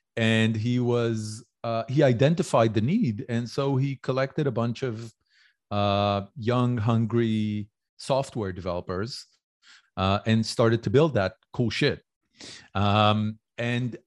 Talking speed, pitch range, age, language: 130 wpm, 100-115 Hz, 40-59, English